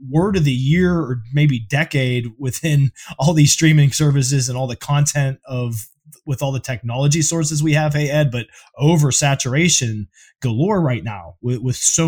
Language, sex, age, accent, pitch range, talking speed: English, male, 20-39, American, 140-175 Hz, 175 wpm